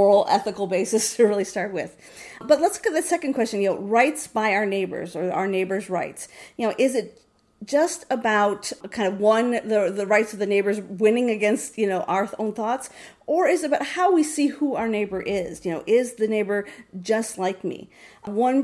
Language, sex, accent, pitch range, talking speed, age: English, female, American, 200-260 Hz, 215 wpm, 40-59